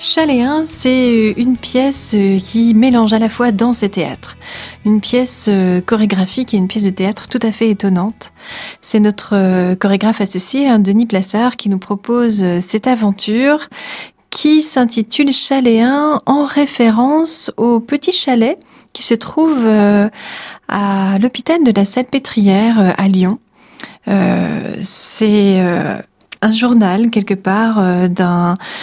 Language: French